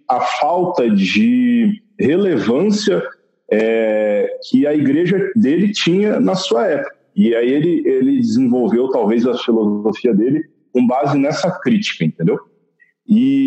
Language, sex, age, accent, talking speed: Portuguese, male, 40-59, Brazilian, 130 wpm